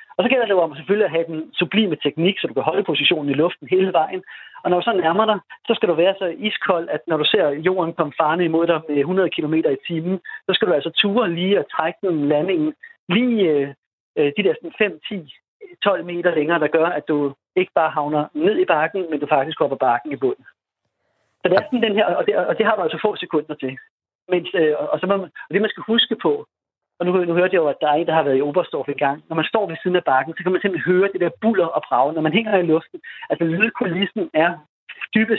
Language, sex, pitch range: Danish, male, 160-205 Hz